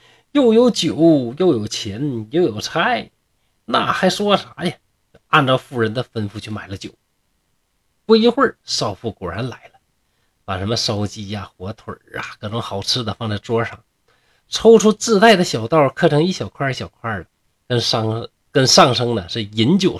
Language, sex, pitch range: Chinese, male, 105-160 Hz